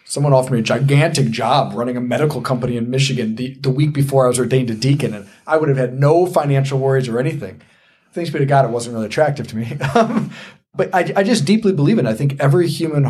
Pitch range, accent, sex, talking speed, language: 125-155 Hz, American, male, 240 wpm, English